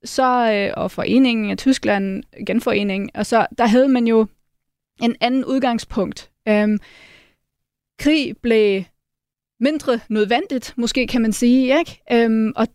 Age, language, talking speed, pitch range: 20-39, Danish, 130 wpm, 210-250 Hz